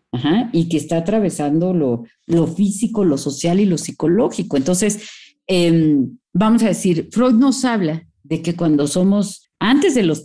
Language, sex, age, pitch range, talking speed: Spanish, female, 50-69, 170-225 Hz, 160 wpm